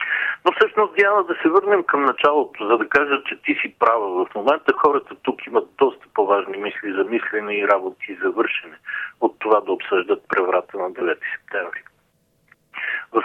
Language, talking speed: Bulgarian, 175 wpm